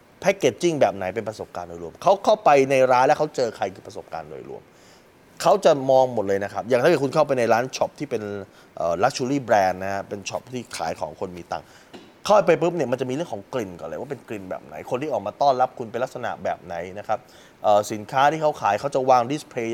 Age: 20-39